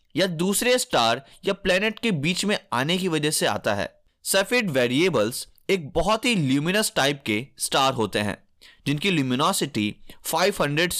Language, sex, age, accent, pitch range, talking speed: Hindi, male, 20-39, native, 125-195 Hz, 145 wpm